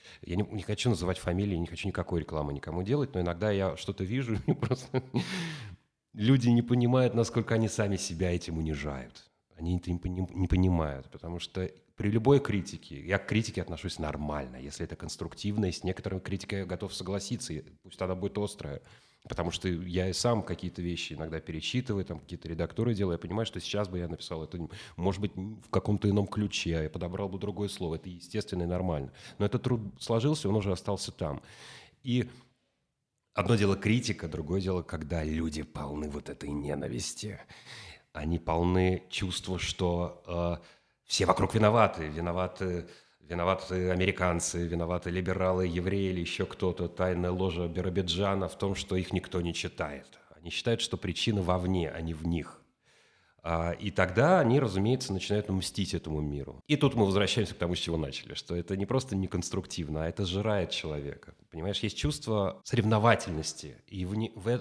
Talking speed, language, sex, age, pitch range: 170 wpm, Russian, male, 30-49, 85-105 Hz